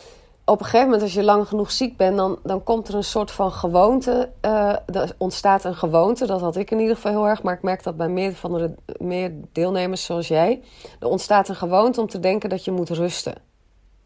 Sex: female